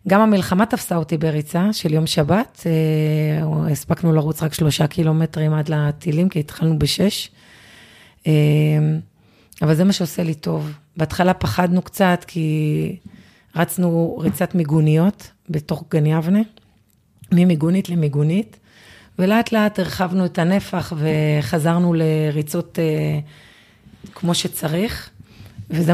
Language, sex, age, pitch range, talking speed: Hebrew, female, 30-49, 155-175 Hz, 105 wpm